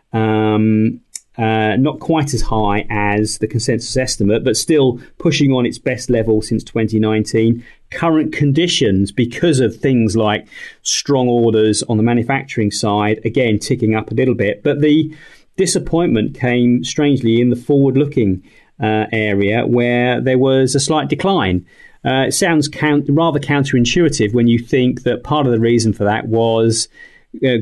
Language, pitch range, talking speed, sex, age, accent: English, 110-145 Hz, 150 wpm, male, 30-49, British